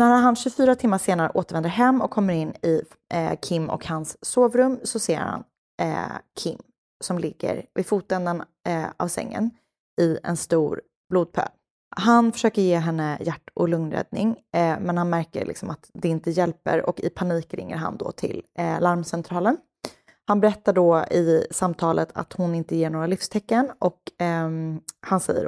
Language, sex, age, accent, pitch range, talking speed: Swedish, female, 20-39, native, 165-215 Hz, 170 wpm